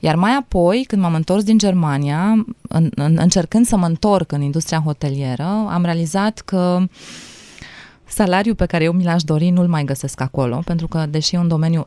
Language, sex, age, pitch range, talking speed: Romanian, female, 20-39, 145-180 Hz, 185 wpm